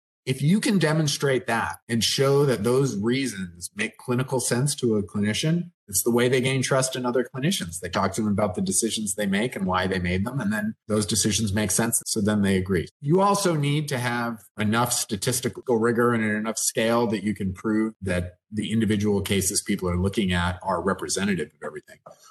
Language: English